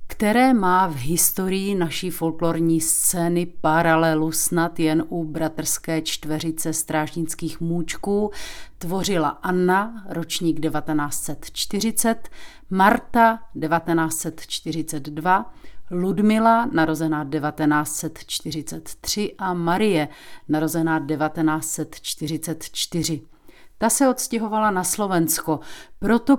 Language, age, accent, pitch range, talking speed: Czech, 40-59, native, 160-200 Hz, 75 wpm